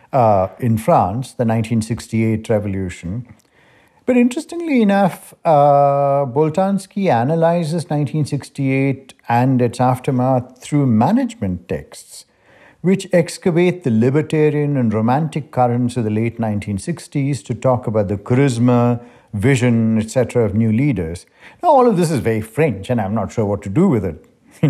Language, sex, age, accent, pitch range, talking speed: English, male, 60-79, Indian, 120-175 Hz, 140 wpm